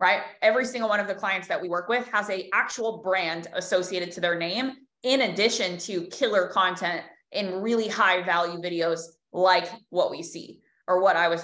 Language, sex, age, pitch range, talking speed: English, female, 20-39, 175-205 Hz, 195 wpm